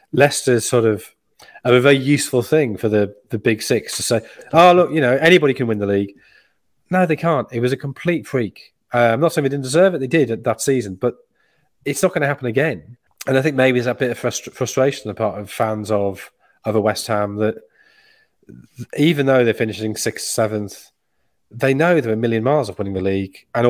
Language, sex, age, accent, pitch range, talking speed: English, male, 30-49, British, 110-140 Hz, 225 wpm